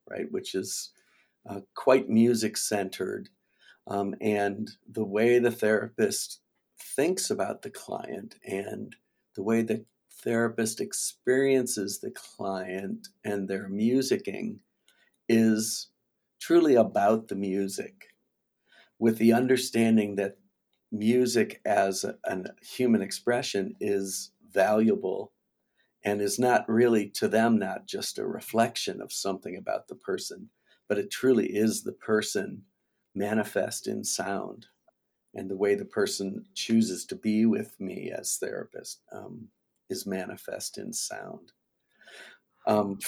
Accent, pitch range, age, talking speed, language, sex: American, 100-115 Hz, 50-69, 115 wpm, English, male